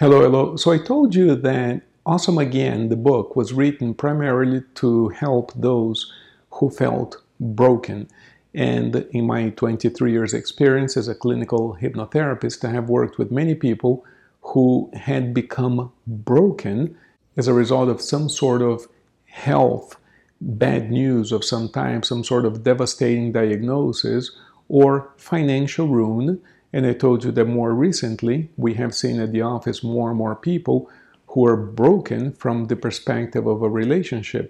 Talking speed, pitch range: 150 wpm, 115-135 Hz